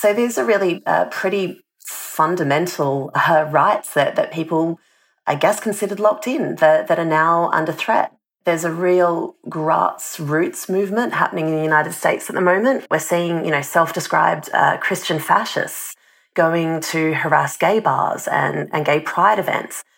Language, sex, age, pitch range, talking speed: English, female, 30-49, 160-185 Hz, 160 wpm